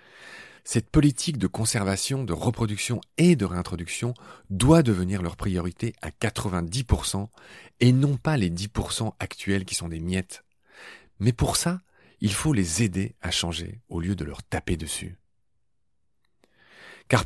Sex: male